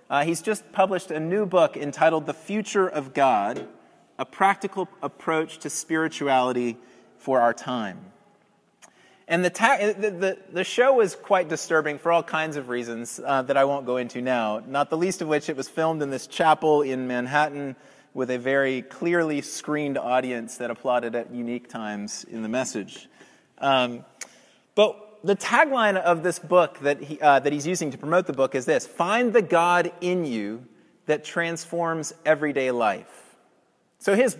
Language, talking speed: English, 175 wpm